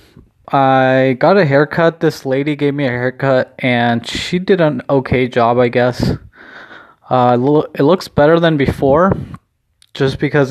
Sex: male